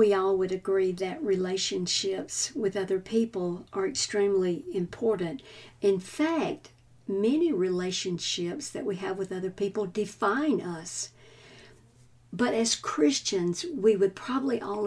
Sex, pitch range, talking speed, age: female, 175-225 Hz, 125 wpm, 60-79